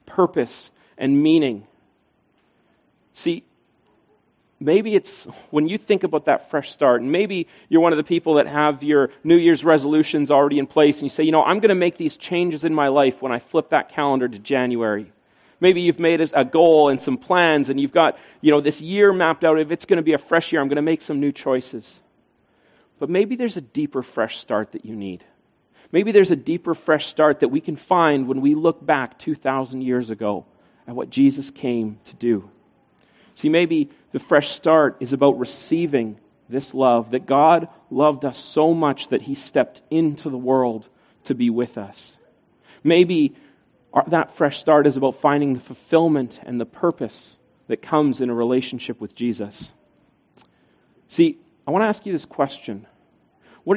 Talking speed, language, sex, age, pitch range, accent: 190 wpm, English, male, 40-59, 130-165 Hz, American